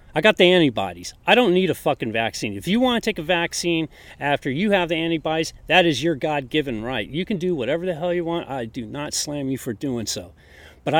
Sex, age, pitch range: male, 30-49, 130-185 Hz